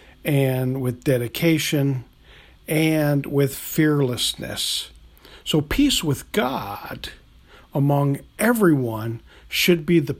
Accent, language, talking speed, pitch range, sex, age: American, English, 90 wpm, 130-170 Hz, male, 50-69